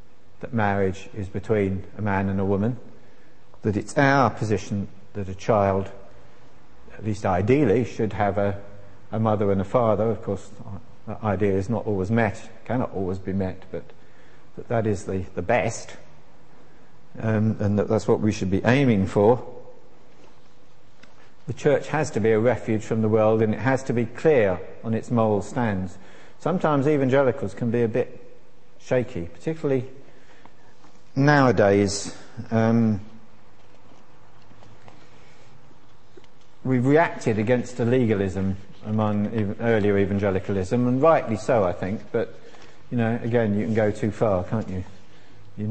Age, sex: 50-69, male